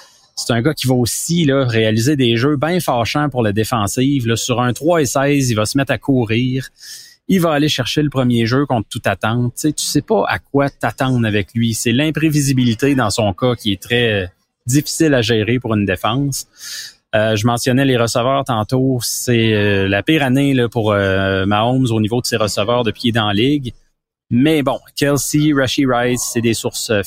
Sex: male